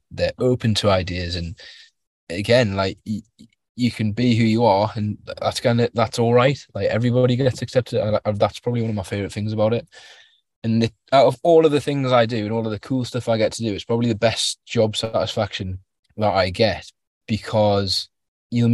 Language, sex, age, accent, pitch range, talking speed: English, male, 20-39, British, 100-120 Hz, 215 wpm